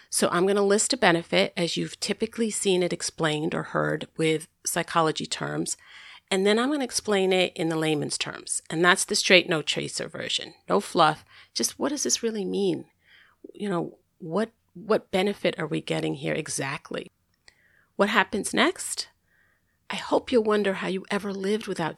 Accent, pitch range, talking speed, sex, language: American, 160-205 Hz, 185 wpm, female, English